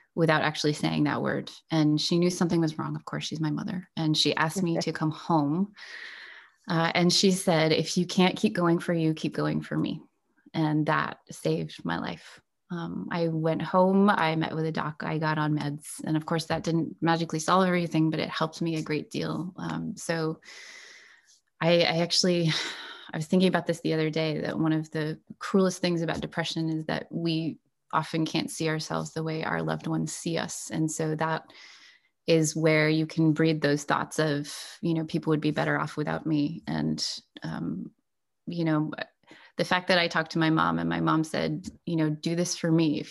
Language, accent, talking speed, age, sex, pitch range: English, American, 205 wpm, 20-39, female, 155-170 Hz